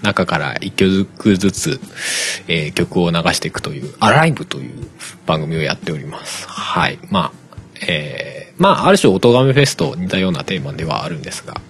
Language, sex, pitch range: Japanese, male, 95-160 Hz